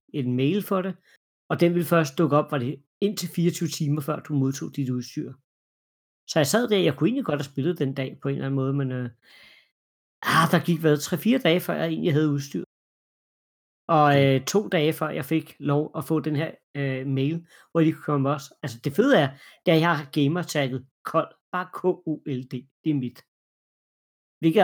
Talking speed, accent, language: 205 wpm, native, Danish